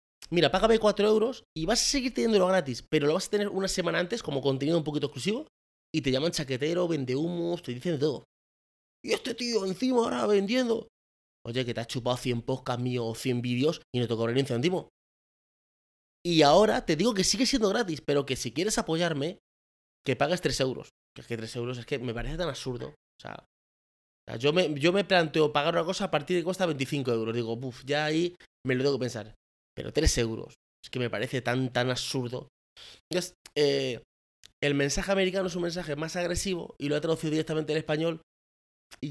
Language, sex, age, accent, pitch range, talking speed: Spanish, male, 30-49, Spanish, 125-170 Hz, 215 wpm